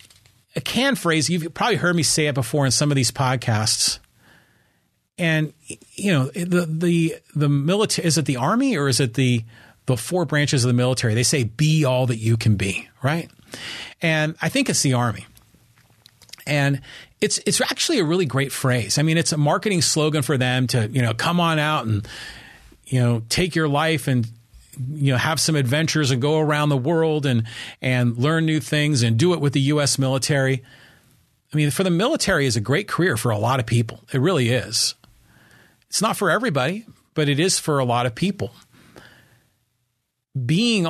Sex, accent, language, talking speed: male, American, English, 195 wpm